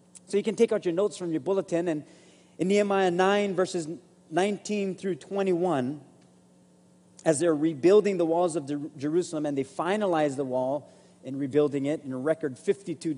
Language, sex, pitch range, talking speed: English, male, 155-205 Hz, 175 wpm